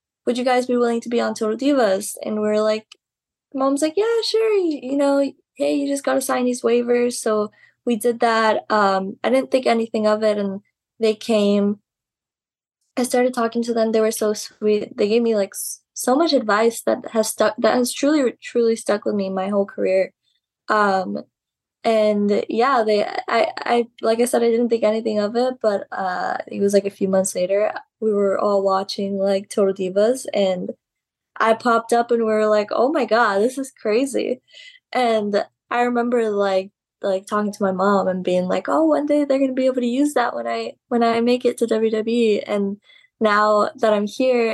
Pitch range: 205-245 Hz